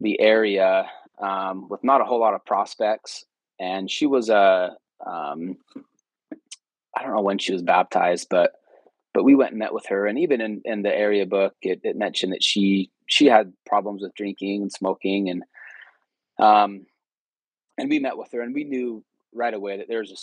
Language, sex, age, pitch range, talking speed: English, male, 20-39, 95-115 Hz, 190 wpm